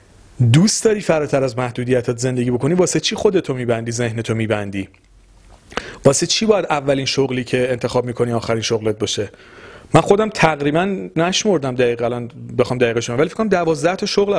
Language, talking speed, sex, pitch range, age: Persian, 155 wpm, male, 120-170 Hz, 40-59